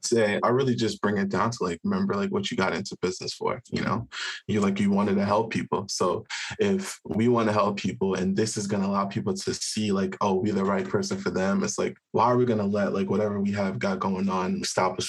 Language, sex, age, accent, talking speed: English, male, 20-39, American, 265 wpm